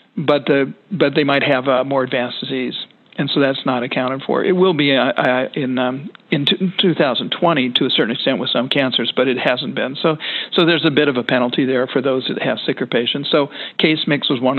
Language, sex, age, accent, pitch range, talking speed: English, male, 50-69, American, 130-150 Hz, 220 wpm